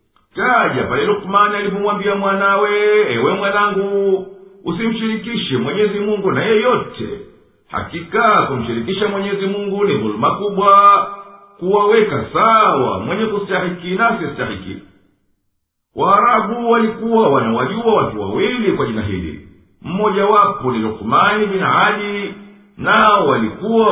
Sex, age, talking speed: male, 50-69, 100 wpm